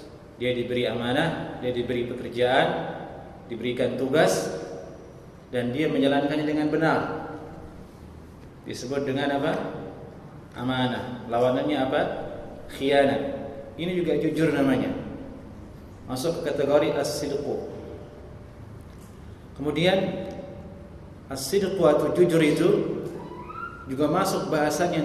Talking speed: 85 wpm